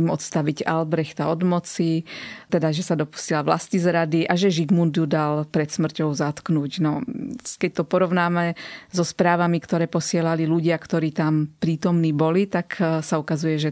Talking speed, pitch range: 155 wpm, 160-180 Hz